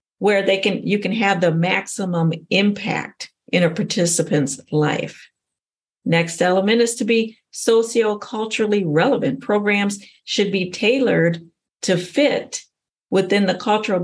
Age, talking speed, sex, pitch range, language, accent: 50-69, 125 wpm, female, 170-215 Hz, English, American